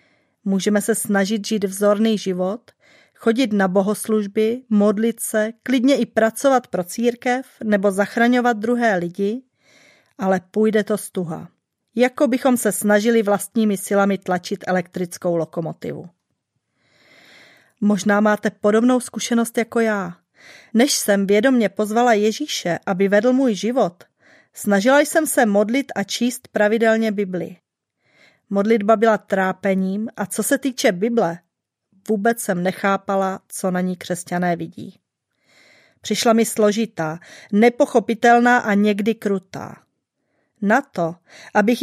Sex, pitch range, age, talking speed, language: female, 195-235 Hz, 30-49, 120 wpm, Czech